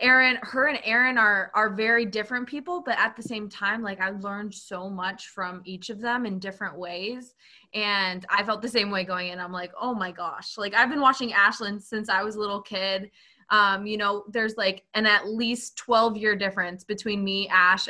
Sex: female